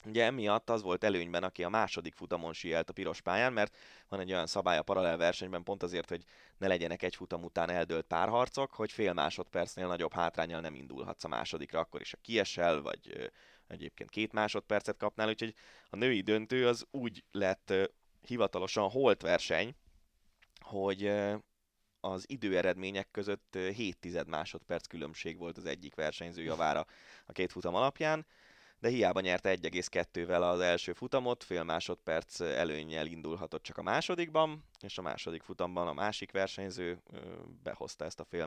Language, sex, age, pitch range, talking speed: Hungarian, male, 20-39, 85-115 Hz, 160 wpm